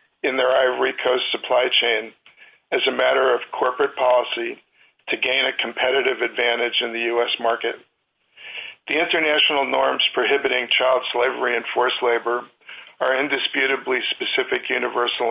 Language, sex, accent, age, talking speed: English, male, American, 50-69, 135 wpm